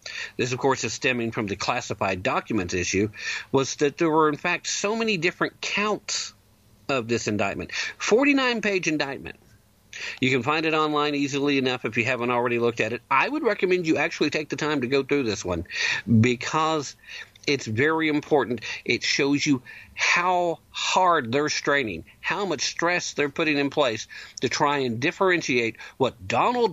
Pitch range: 120-165 Hz